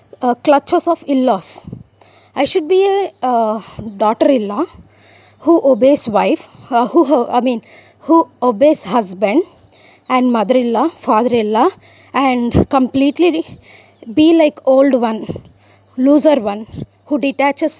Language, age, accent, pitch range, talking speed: English, 20-39, Indian, 245-325 Hz, 130 wpm